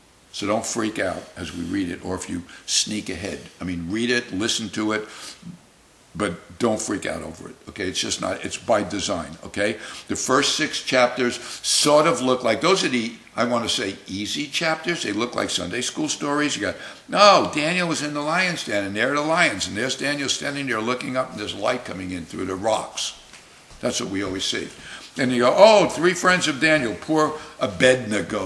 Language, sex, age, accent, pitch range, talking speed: English, male, 60-79, American, 105-145 Hz, 215 wpm